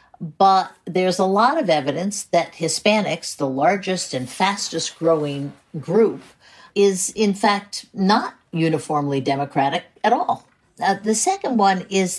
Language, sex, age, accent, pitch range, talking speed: English, female, 60-79, American, 160-215 Hz, 135 wpm